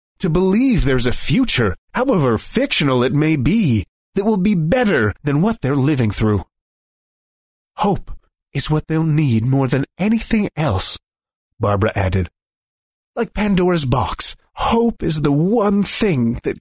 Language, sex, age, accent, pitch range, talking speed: English, male, 30-49, American, 105-160 Hz, 140 wpm